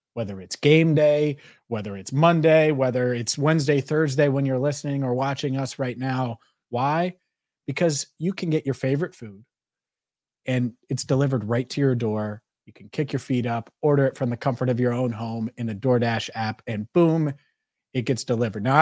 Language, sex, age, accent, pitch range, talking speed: English, male, 30-49, American, 115-140 Hz, 190 wpm